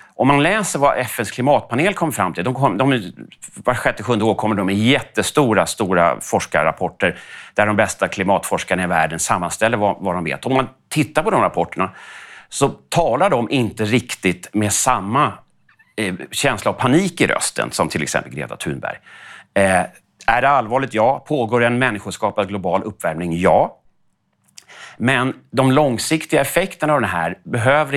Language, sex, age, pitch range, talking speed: Swedish, male, 30-49, 100-140 Hz, 155 wpm